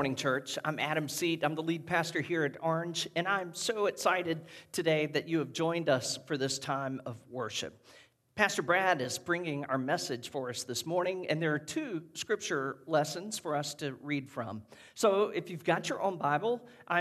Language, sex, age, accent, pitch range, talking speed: English, male, 50-69, American, 135-165 Hz, 200 wpm